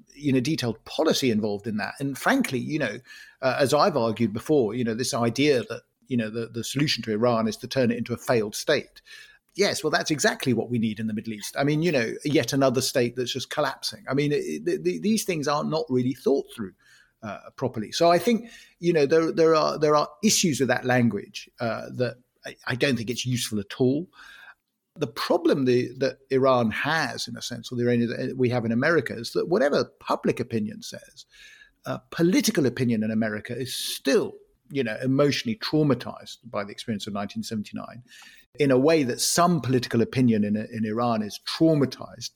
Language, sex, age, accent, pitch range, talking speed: English, male, 50-69, British, 115-155 Hz, 205 wpm